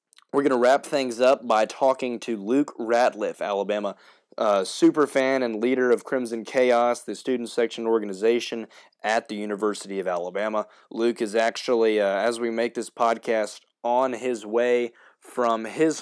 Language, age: English, 20-39